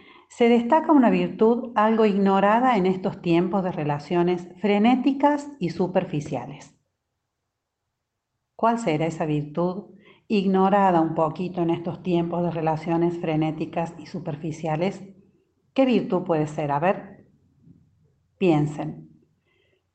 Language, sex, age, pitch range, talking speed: Spanish, female, 40-59, 160-200 Hz, 110 wpm